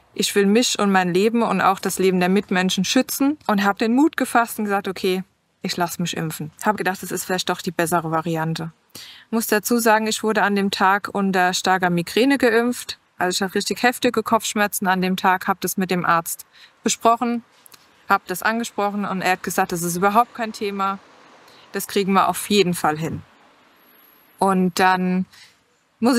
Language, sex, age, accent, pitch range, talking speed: German, female, 20-39, German, 185-225 Hz, 195 wpm